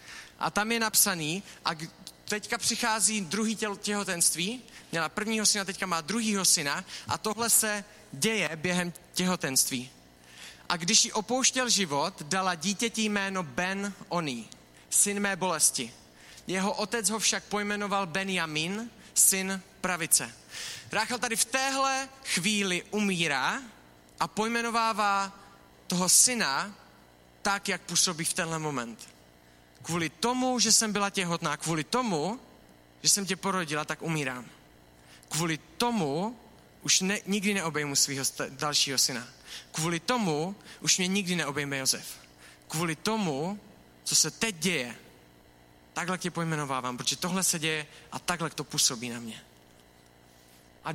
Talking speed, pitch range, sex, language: 125 wpm, 135-205 Hz, male, Czech